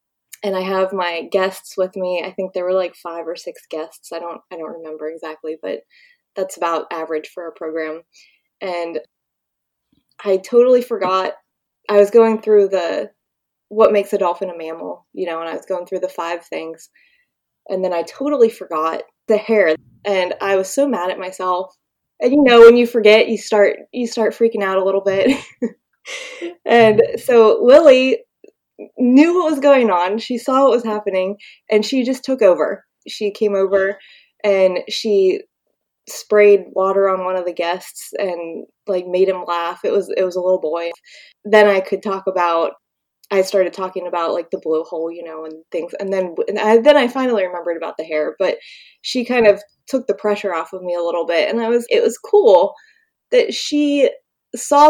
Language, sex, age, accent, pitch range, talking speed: English, female, 20-39, American, 180-240 Hz, 190 wpm